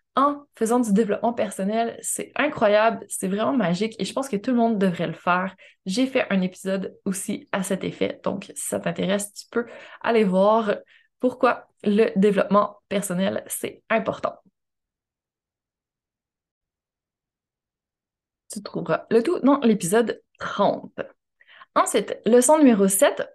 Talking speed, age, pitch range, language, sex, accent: 135 wpm, 20-39, 205-275 Hz, French, female, Canadian